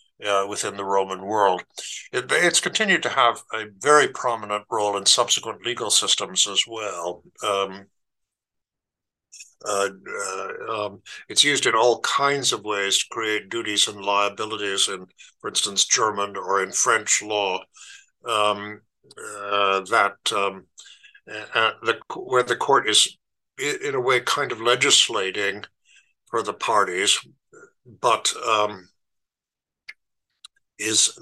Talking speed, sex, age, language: 130 wpm, male, 60-79, English